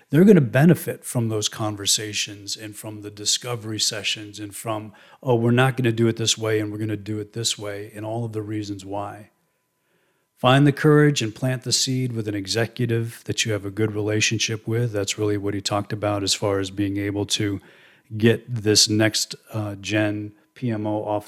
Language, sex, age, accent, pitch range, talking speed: English, male, 40-59, American, 105-120 Hz, 205 wpm